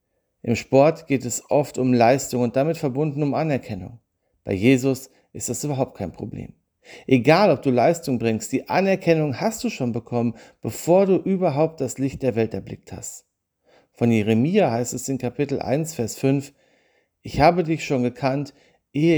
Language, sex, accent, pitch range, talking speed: German, male, German, 115-145 Hz, 170 wpm